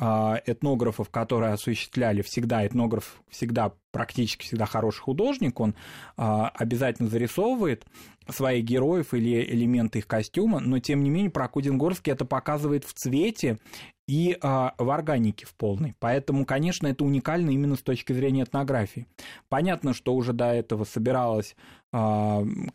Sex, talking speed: male, 125 wpm